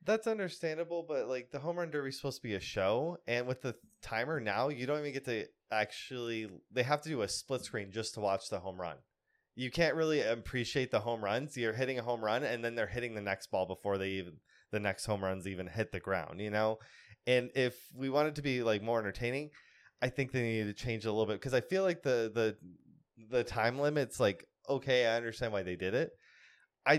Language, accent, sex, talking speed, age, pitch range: English, American, male, 240 wpm, 20-39, 100-130 Hz